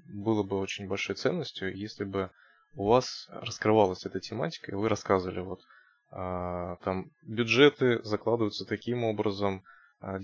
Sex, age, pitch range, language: male, 20-39, 95-115 Hz, Russian